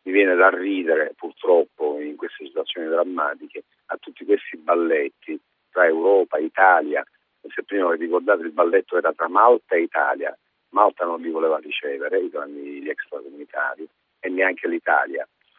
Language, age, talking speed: Italian, 50-69, 145 wpm